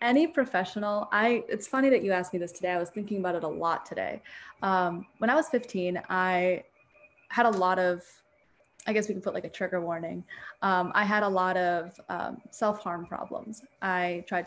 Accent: American